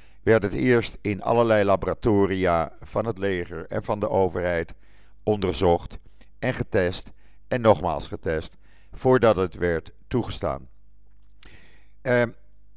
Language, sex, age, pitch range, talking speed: Dutch, male, 50-69, 90-115 Hz, 115 wpm